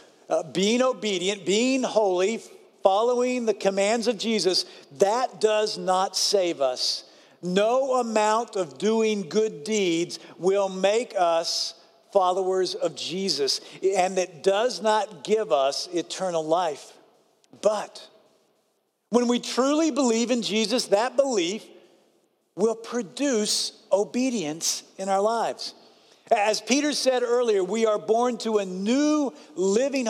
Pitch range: 190-240 Hz